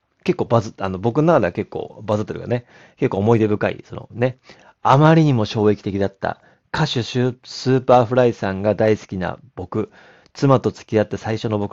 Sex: male